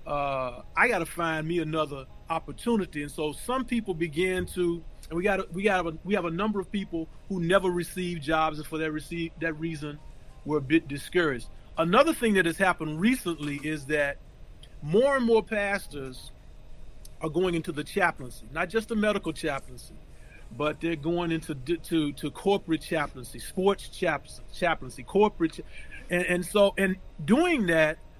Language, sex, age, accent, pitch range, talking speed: English, male, 40-59, American, 155-200 Hz, 170 wpm